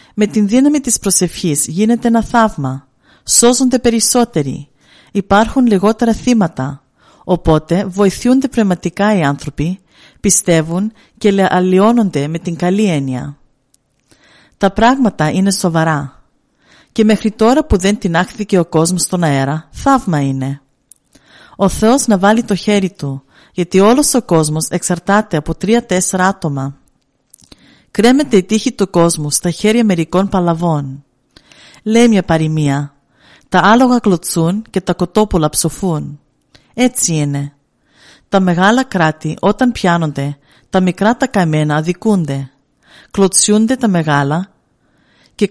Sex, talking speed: female, 120 wpm